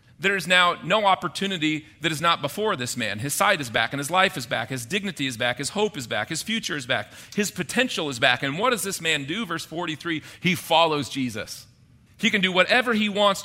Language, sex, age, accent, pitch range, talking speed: English, male, 40-59, American, 135-195 Hz, 235 wpm